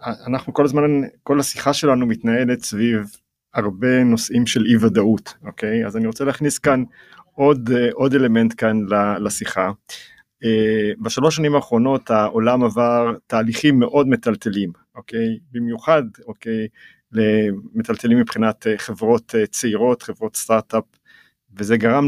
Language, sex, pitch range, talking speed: Hebrew, male, 115-135 Hz, 115 wpm